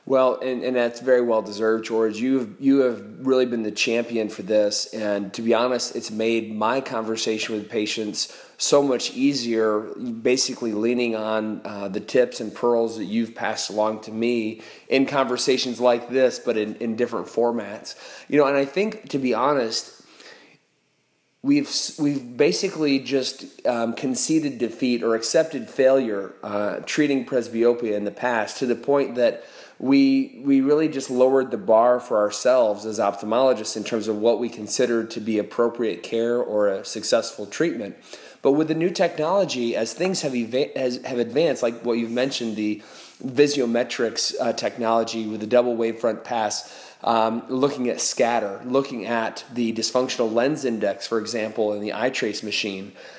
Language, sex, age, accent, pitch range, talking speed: English, male, 30-49, American, 110-130 Hz, 165 wpm